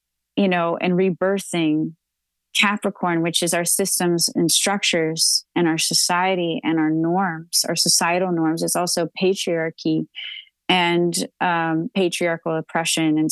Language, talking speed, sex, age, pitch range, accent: English, 125 wpm, female, 30-49, 165-200 Hz, American